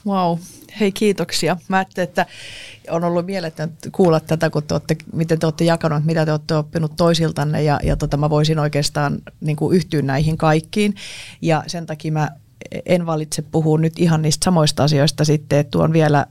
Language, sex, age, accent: Finnish, female, 30-49, native